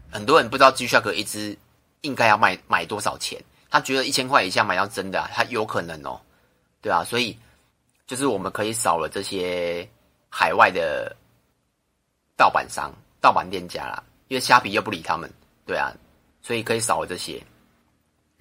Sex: male